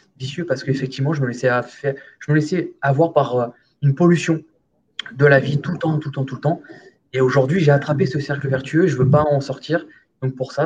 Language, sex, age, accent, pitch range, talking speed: French, male, 20-39, French, 125-145 Hz, 215 wpm